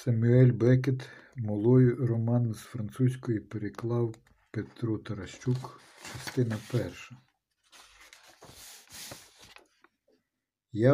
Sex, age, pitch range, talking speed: male, 50-69, 105-125 Hz, 65 wpm